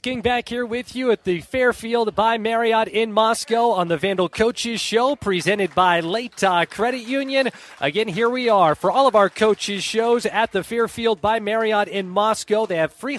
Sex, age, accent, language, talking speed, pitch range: male, 30-49, American, English, 190 wpm, 165-230 Hz